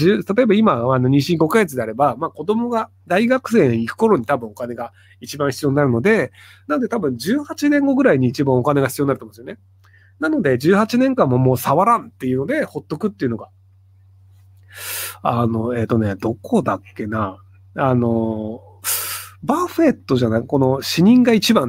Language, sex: Japanese, male